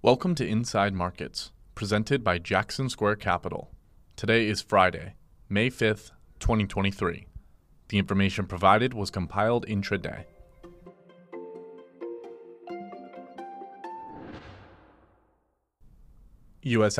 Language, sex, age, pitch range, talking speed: English, male, 30-49, 90-110 Hz, 80 wpm